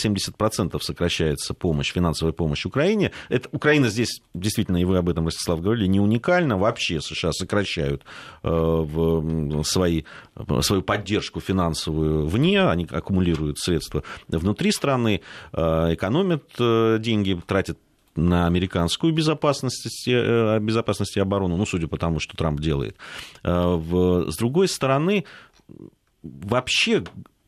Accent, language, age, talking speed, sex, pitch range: native, Russian, 30-49, 115 wpm, male, 85-120 Hz